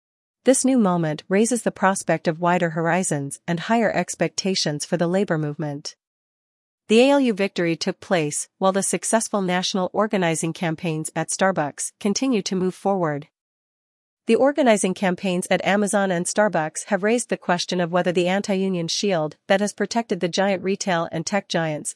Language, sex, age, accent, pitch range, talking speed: English, female, 40-59, American, 170-205 Hz, 160 wpm